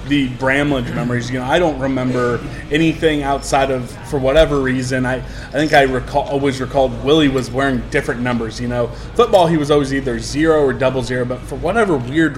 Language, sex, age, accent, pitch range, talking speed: English, male, 20-39, American, 125-140 Hz, 200 wpm